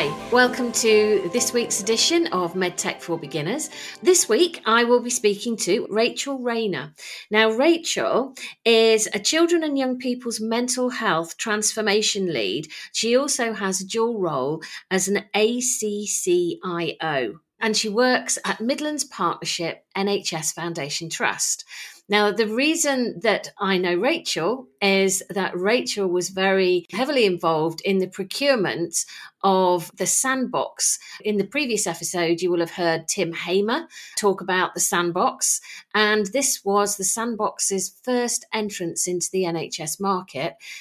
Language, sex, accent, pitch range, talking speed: English, female, British, 185-240 Hz, 135 wpm